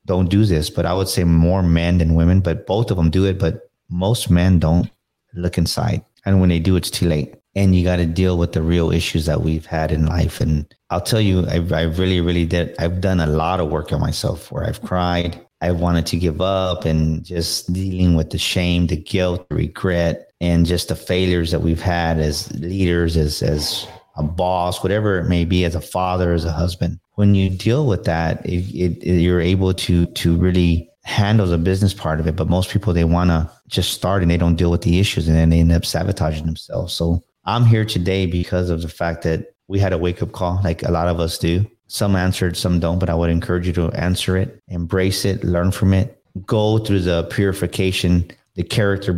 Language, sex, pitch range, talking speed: English, male, 85-95 Hz, 225 wpm